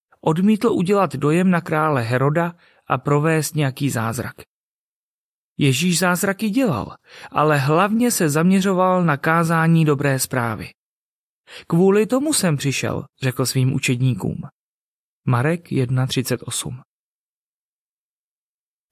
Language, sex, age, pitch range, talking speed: Czech, male, 30-49, 130-170 Hz, 95 wpm